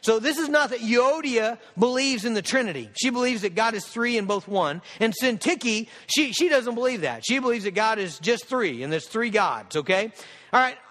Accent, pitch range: American, 235-275 Hz